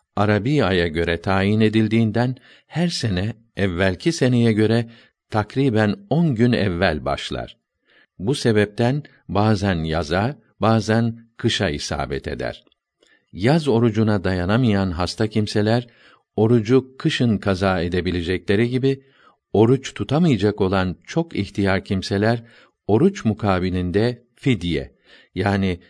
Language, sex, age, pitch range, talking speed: Turkish, male, 50-69, 95-120 Hz, 100 wpm